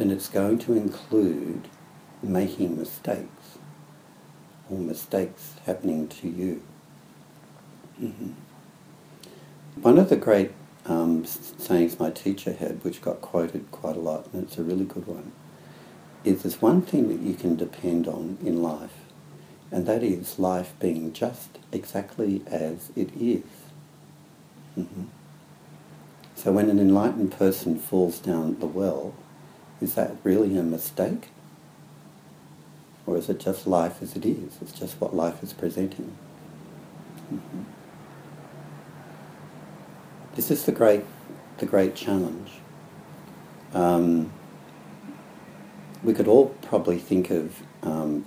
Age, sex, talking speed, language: 60-79, male, 125 wpm, English